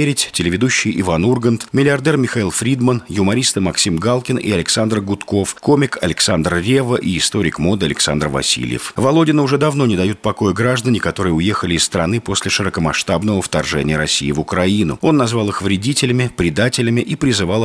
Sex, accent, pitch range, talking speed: male, native, 90-130 Hz, 150 wpm